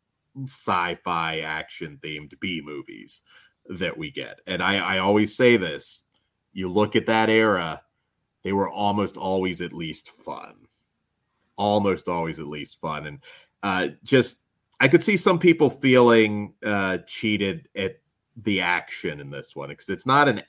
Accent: American